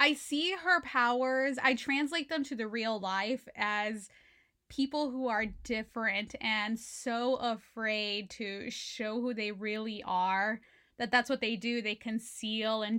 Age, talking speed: 10-29, 150 wpm